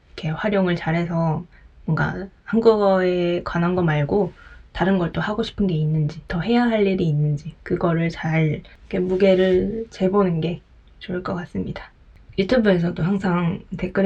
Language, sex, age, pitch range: Japanese, female, 20-39, 175-205 Hz